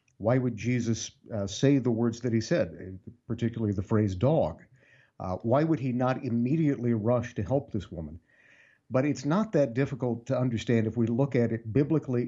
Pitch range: 105-130 Hz